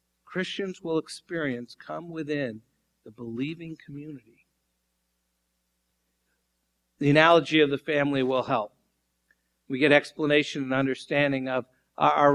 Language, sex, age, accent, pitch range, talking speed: English, male, 50-69, American, 130-180 Hz, 105 wpm